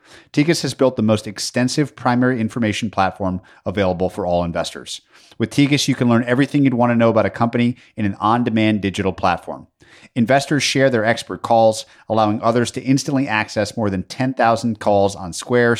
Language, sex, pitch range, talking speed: English, male, 100-130 Hz, 180 wpm